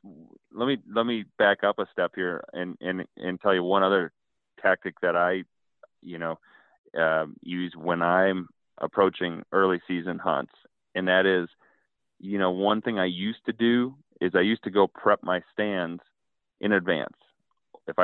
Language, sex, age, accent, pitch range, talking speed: English, male, 30-49, American, 90-105 Hz, 170 wpm